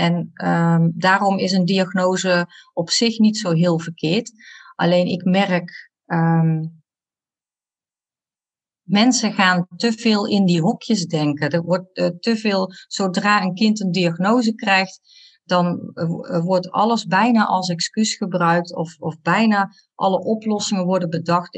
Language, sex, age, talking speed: Dutch, female, 40-59, 135 wpm